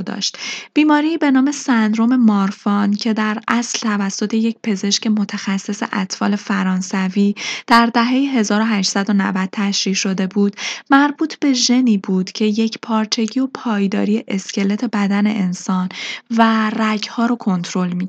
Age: 10-29